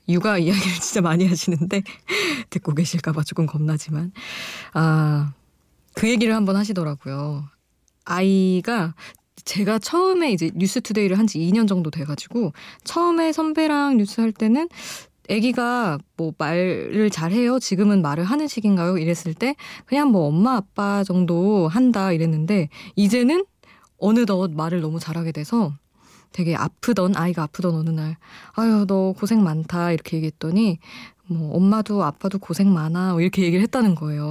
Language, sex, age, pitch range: Korean, female, 20-39, 165-225 Hz